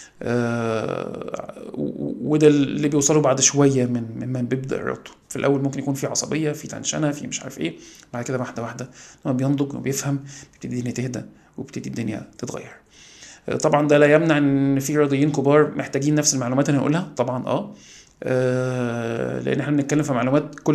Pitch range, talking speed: 130-150 Hz, 170 wpm